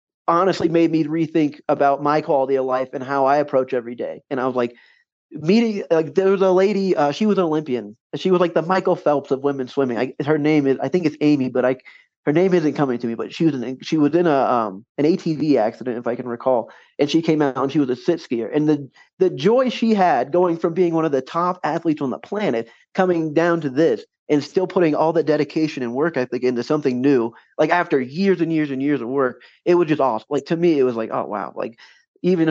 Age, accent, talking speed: 20-39, American, 255 wpm